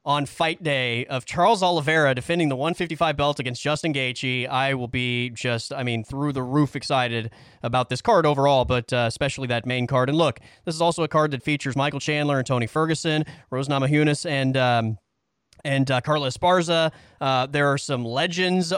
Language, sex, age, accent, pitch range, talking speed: English, male, 20-39, American, 135-170 Hz, 190 wpm